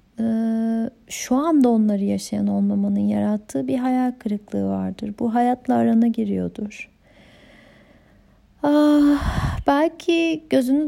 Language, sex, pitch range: Turkish, female, 220-265 Hz